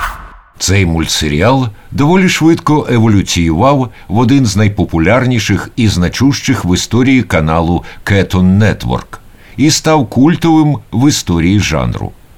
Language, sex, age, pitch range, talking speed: Ukrainian, male, 60-79, 95-140 Hz, 105 wpm